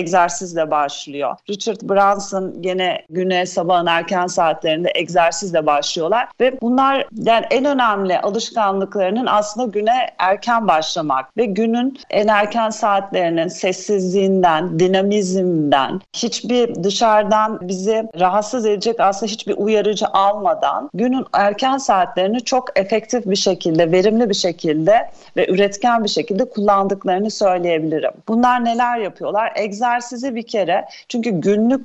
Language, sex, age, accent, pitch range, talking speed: Turkish, female, 40-59, native, 185-235 Hz, 115 wpm